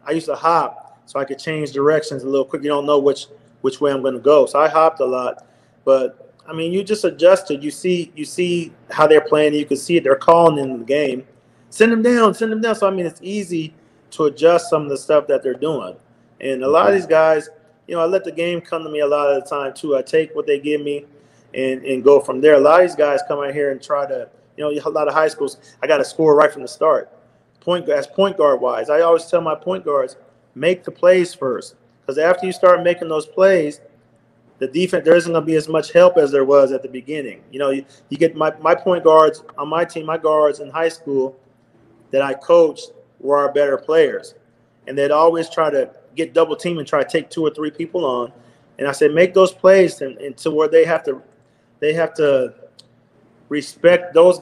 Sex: male